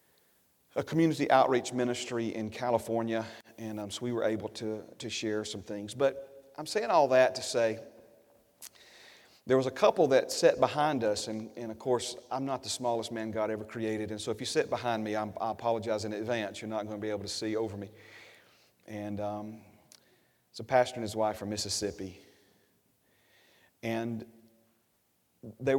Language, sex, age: English, male, 40-59